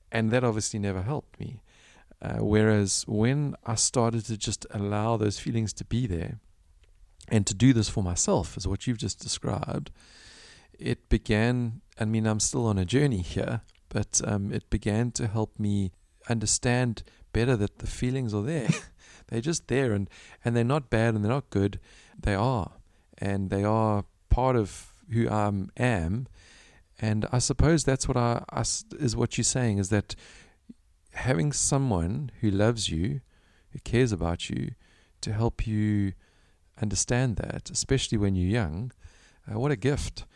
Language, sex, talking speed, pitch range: English, male, 165 wpm, 100-120 Hz